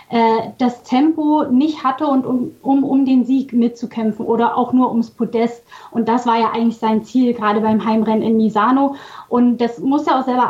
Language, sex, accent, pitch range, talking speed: German, female, German, 225-260 Hz, 195 wpm